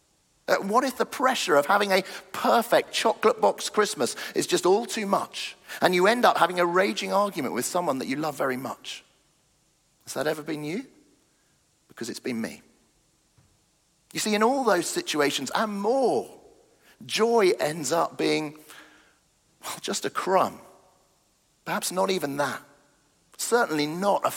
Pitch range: 170-235 Hz